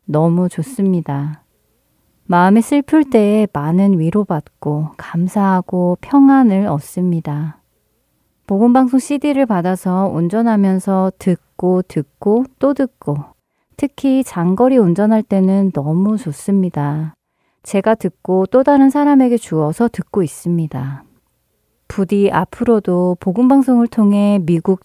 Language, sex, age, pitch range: Korean, female, 30-49, 165-220 Hz